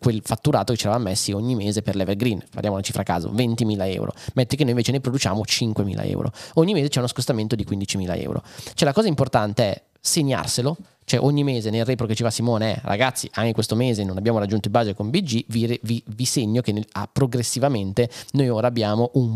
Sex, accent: male, native